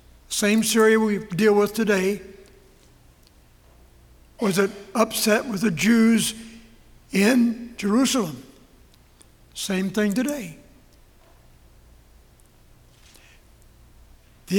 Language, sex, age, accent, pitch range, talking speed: English, male, 60-79, American, 185-225 Hz, 75 wpm